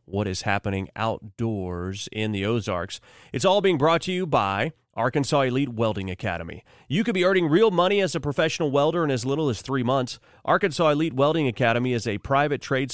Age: 30-49